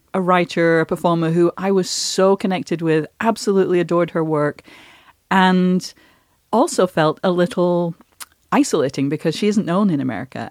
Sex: female